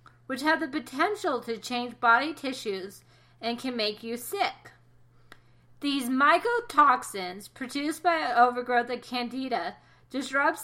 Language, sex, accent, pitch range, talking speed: English, female, American, 215-290 Hz, 125 wpm